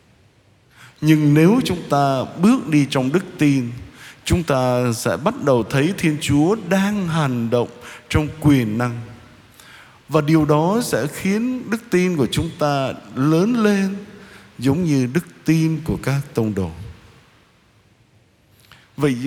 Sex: male